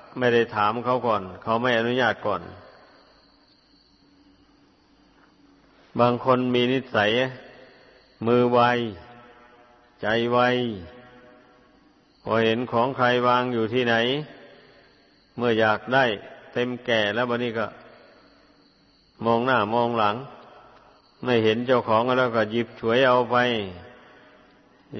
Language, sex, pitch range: Thai, male, 110-130 Hz